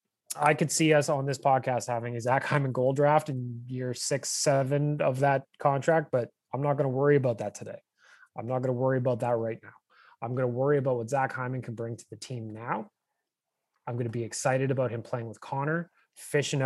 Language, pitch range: English, 130-160 Hz